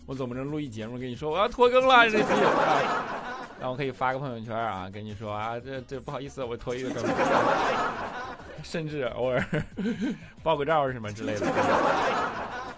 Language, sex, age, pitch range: Chinese, male, 20-39, 110-155 Hz